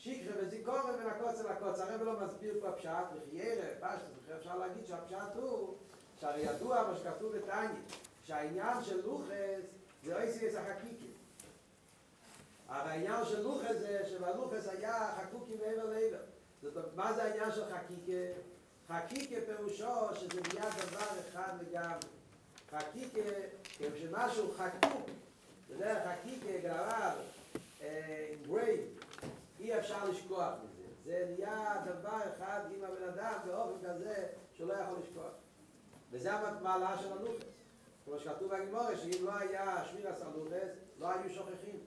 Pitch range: 185-225 Hz